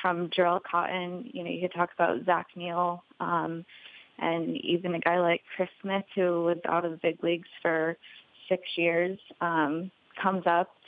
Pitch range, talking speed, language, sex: 170-185 Hz, 175 wpm, English, female